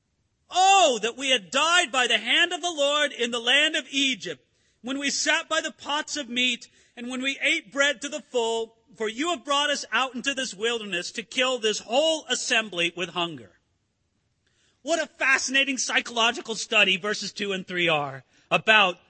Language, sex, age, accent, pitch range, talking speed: English, male, 40-59, American, 210-290 Hz, 185 wpm